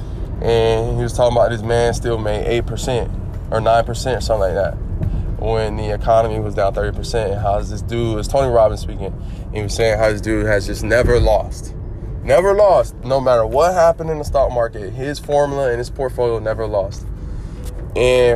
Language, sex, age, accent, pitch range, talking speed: English, male, 20-39, American, 105-120 Hz, 195 wpm